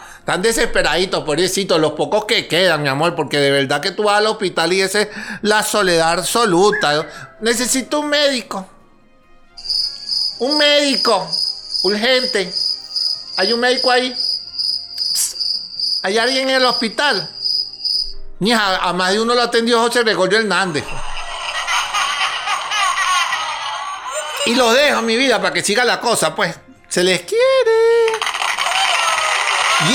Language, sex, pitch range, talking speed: Spanish, male, 200-250 Hz, 125 wpm